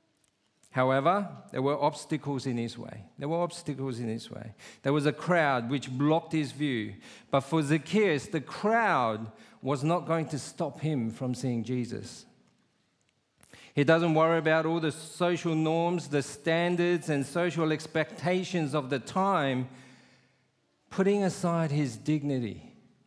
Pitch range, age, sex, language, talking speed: 130-165 Hz, 50-69, male, English, 145 wpm